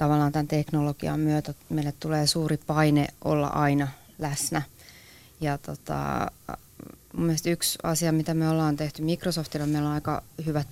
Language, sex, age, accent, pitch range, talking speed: Finnish, female, 30-49, native, 145-165 Hz, 145 wpm